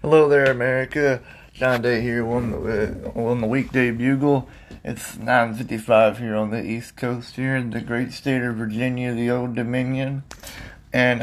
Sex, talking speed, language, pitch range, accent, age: male, 160 wpm, English, 110-125 Hz, American, 30-49